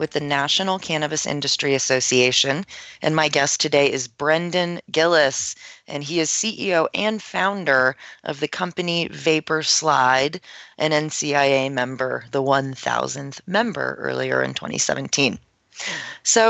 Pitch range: 130-160 Hz